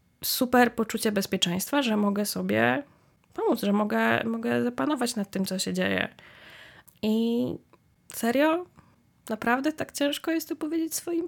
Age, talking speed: 20-39, 135 wpm